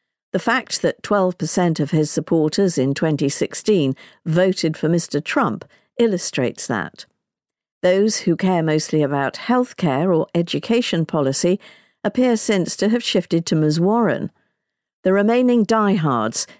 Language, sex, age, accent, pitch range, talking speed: English, female, 50-69, British, 155-200 Hz, 130 wpm